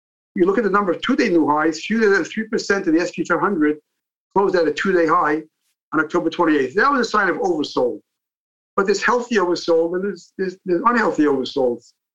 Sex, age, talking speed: male, 50-69, 205 wpm